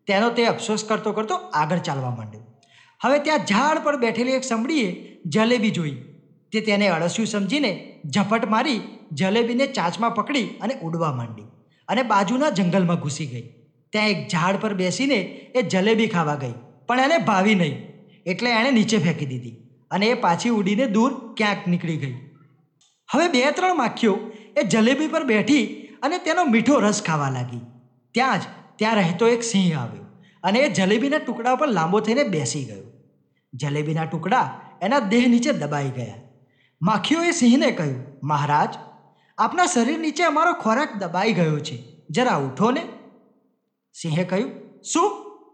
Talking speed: 150 wpm